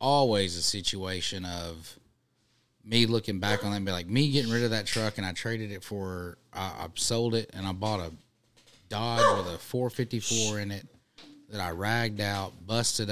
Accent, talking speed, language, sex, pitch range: American, 190 wpm, English, male, 95-110 Hz